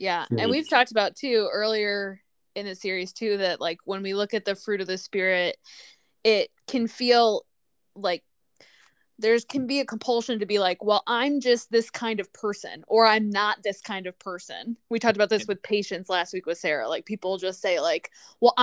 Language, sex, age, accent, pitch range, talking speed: English, female, 10-29, American, 195-240 Hz, 205 wpm